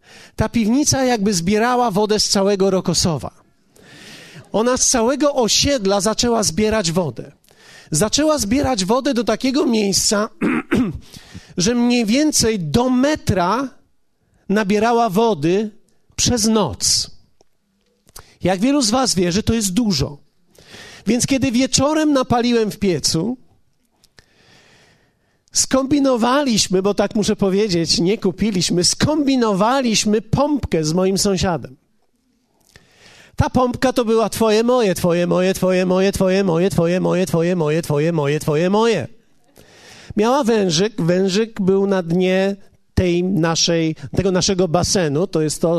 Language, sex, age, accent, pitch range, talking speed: Polish, male, 40-59, native, 175-230 Hz, 115 wpm